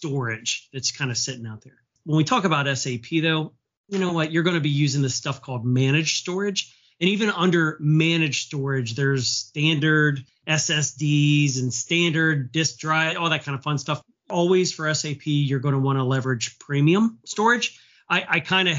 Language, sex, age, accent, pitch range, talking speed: English, male, 30-49, American, 135-165 Hz, 190 wpm